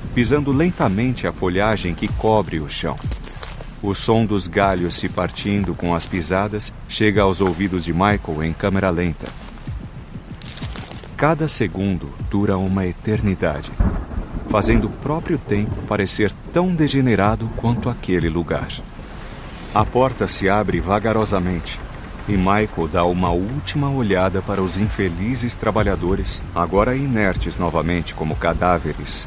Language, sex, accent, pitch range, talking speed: Portuguese, male, Brazilian, 90-125 Hz, 125 wpm